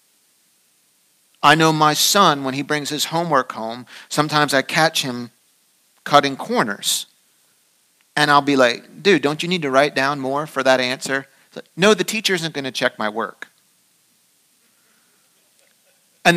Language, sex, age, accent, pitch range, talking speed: English, male, 40-59, American, 120-150 Hz, 160 wpm